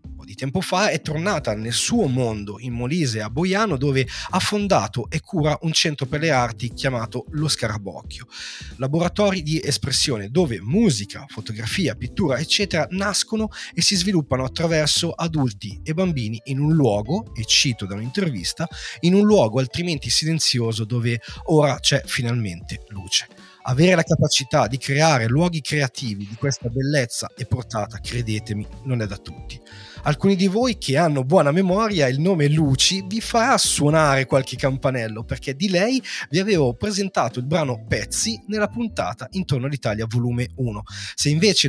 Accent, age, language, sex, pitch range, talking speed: native, 30-49, Italian, male, 120-170 Hz, 155 wpm